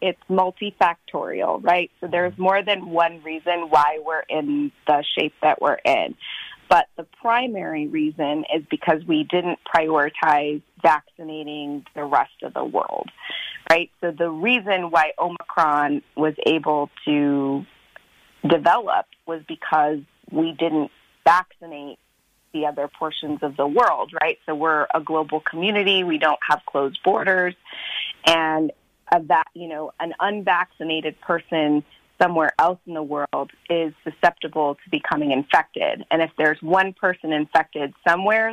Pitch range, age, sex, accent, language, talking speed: 150-175 Hz, 30-49, female, American, English, 140 wpm